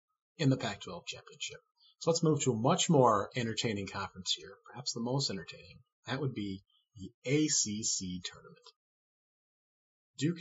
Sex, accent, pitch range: male, American, 100-135 Hz